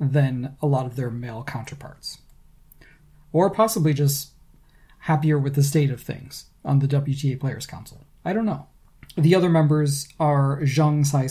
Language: English